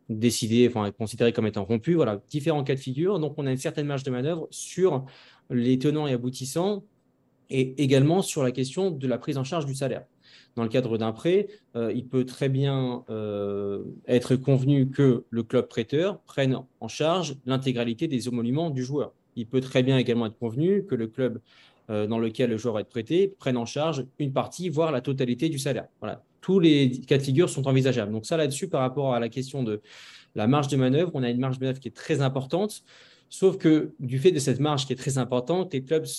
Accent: French